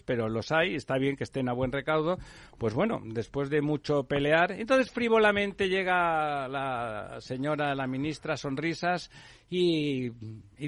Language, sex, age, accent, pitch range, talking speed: Spanish, male, 60-79, Spanish, 125-155 Hz, 145 wpm